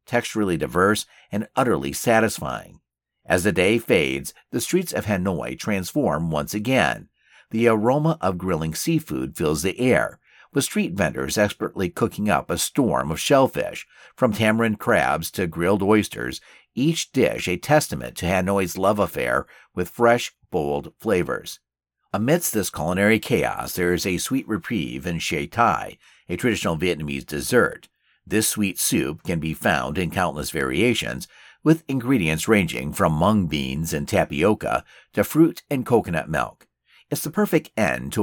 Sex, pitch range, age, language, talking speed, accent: male, 80-120 Hz, 50-69, English, 150 wpm, American